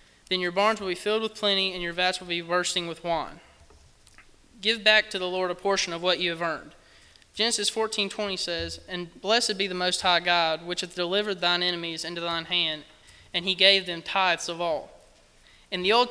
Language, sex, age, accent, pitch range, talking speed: English, male, 20-39, American, 165-195 Hz, 210 wpm